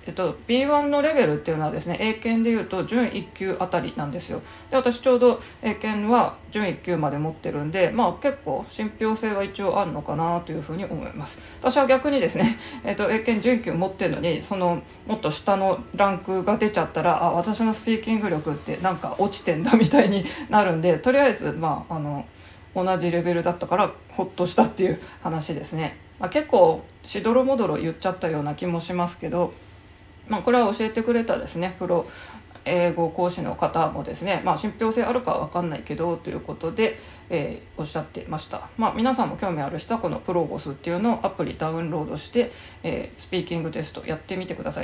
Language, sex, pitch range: Japanese, female, 170-220 Hz